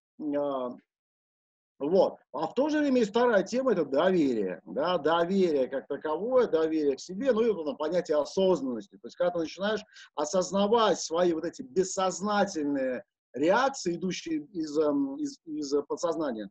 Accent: native